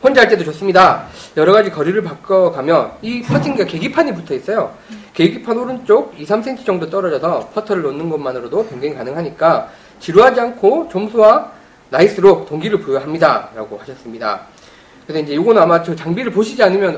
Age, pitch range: 30-49, 160-230 Hz